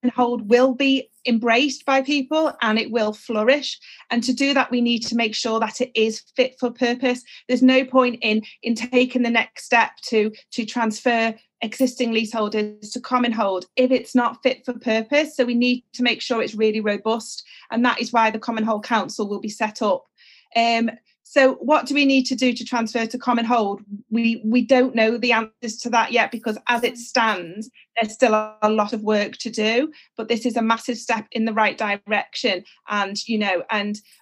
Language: English